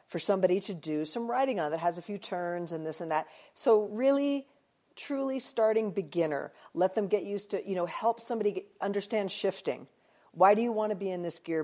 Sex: female